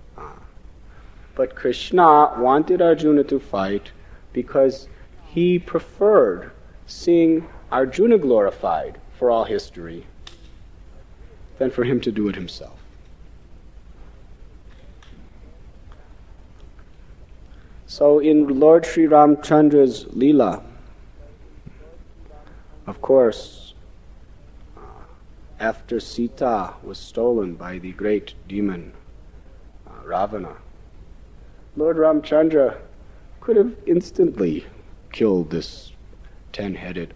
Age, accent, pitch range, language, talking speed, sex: 40-59, American, 85-135 Hz, English, 80 wpm, male